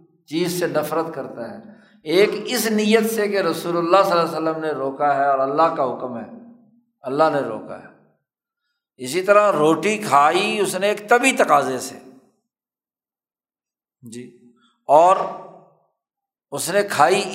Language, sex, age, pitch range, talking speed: Urdu, male, 50-69, 150-205 Hz, 150 wpm